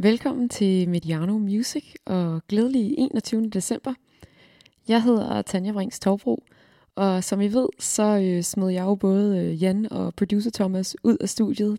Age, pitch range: 20-39, 175-210 Hz